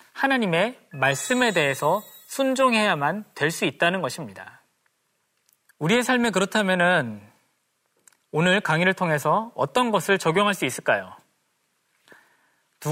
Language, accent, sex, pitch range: Korean, native, male, 170-235 Hz